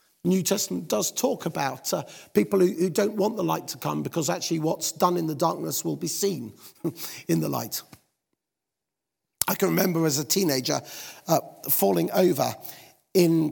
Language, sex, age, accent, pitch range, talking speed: English, male, 50-69, British, 155-190 Hz, 170 wpm